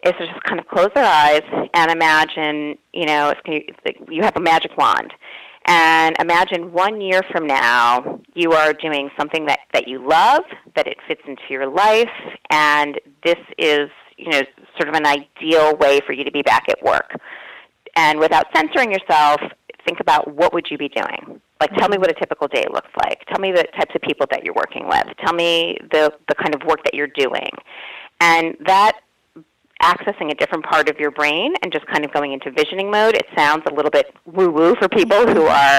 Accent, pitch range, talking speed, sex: American, 145-170 Hz, 205 wpm, female